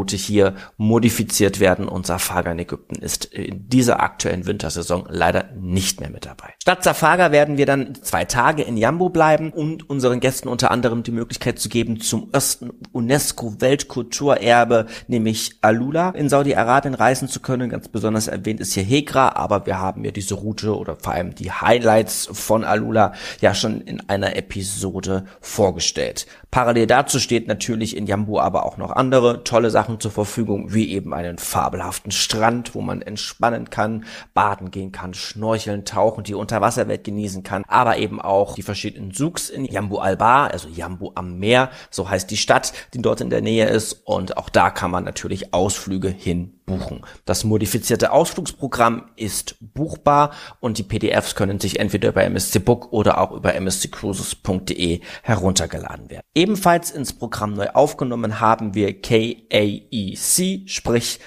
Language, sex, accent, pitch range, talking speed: German, male, German, 95-125 Hz, 165 wpm